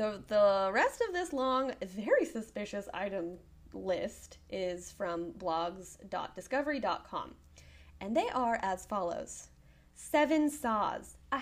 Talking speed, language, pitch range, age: 110 wpm, English, 180-280 Hz, 20-39